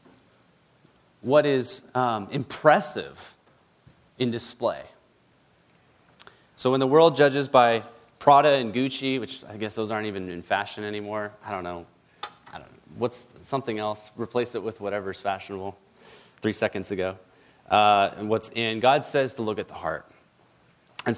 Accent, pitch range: American, 115-155 Hz